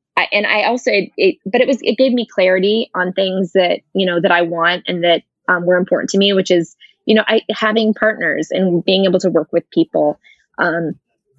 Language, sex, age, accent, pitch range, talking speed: English, female, 20-39, American, 175-205 Hz, 225 wpm